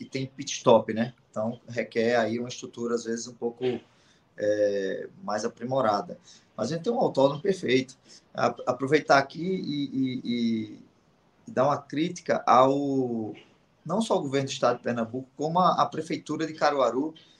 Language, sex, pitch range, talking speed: Portuguese, male, 115-150 Hz, 155 wpm